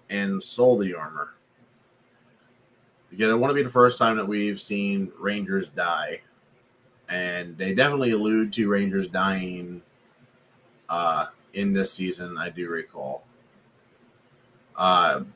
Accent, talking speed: American, 120 wpm